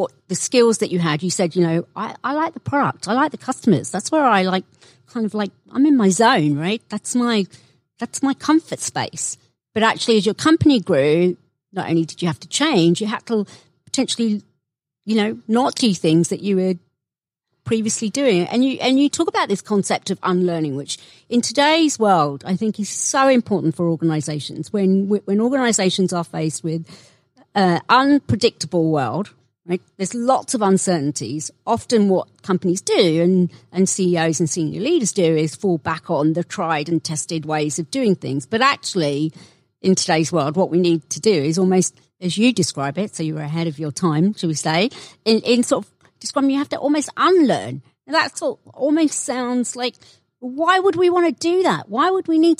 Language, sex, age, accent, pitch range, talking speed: English, female, 40-59, British, 165-245 Hz, 200 wpm